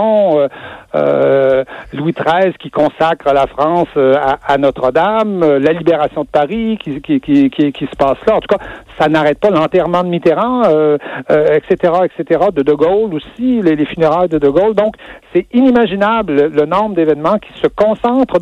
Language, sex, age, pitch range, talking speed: French, male, 60-79, 150-210 Hz, 175 wpm